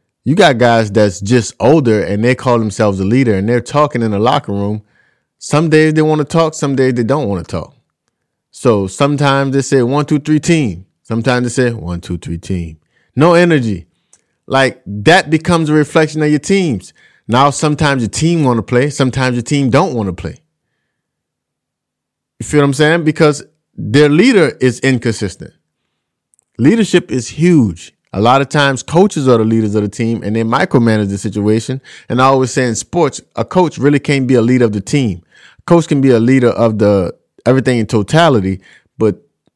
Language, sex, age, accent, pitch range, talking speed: English, male, 30-49, American, 105-145 Hz, 195 wpm